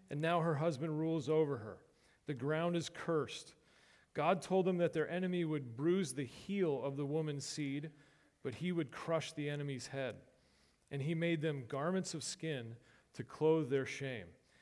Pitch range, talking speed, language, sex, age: 135-165 Hz, 175 wpm, English, male, 40-59